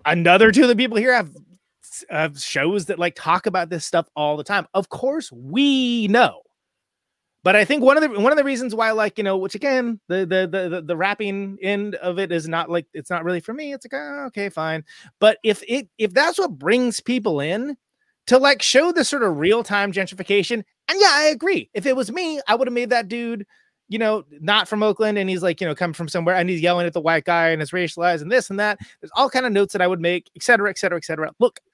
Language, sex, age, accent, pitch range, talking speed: English, male, 30-49, American, 175-250 Hz, 250 wpm